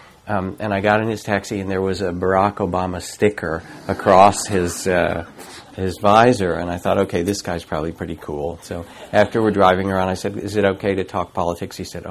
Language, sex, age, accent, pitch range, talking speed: English, male, 50-69, American, 85-105 Hz, 215 wpm